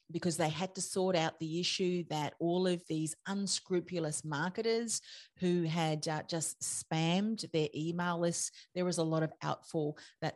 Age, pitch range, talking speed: 40-59, 150-180 Hz, 170 wpm